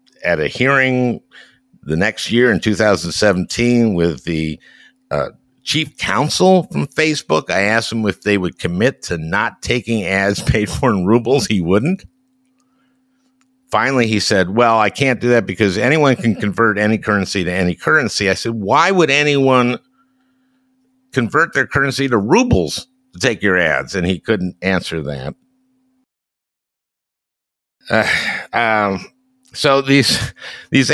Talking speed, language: 140 wpm, English